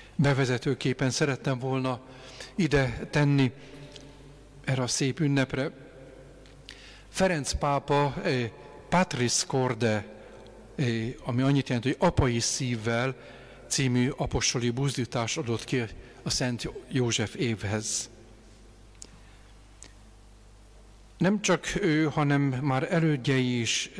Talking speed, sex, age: 95 wpm, male, 50-69